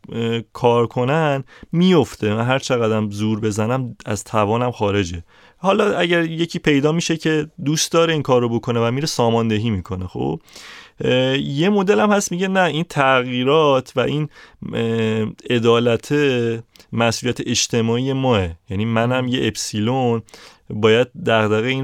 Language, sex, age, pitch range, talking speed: Persian, male, 30-49, 105-130 Hz, 130 wpm